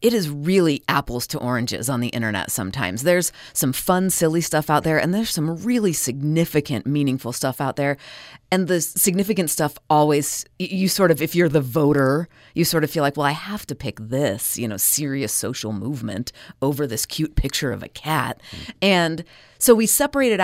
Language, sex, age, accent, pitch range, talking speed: English, female, 30-49, American, 130-170 Hz, 190 wpm